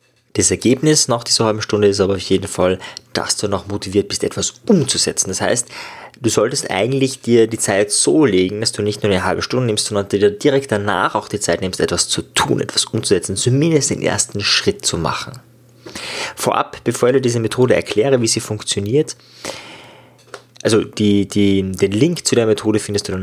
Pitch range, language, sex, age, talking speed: 100-125 Hz, German, male, 20-39, 190 wpm